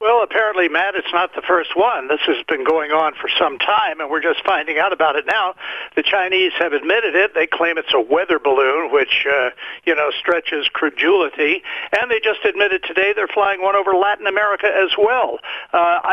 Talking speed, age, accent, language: 205 wpm, 60-79, American, English